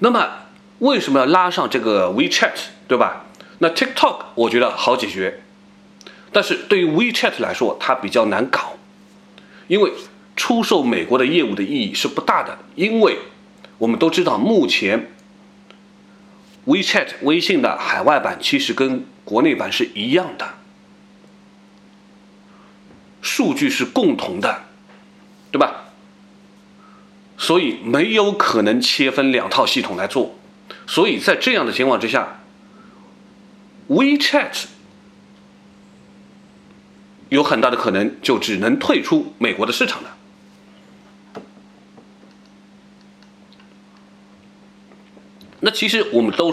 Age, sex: 30-49, male